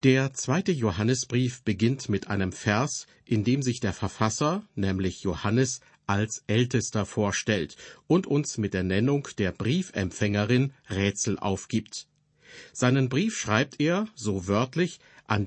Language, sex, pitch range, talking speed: German, male, 105-135 Hz, 130 wpm